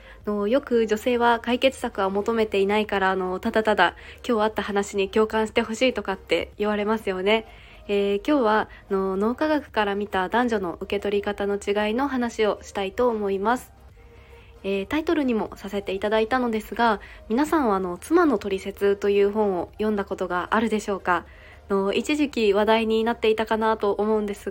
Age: 20-39